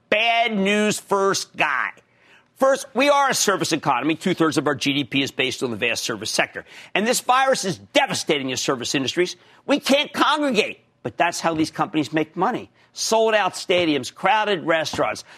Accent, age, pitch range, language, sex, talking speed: American, 50-69, 160-255 Hz, English, male, 170 wpm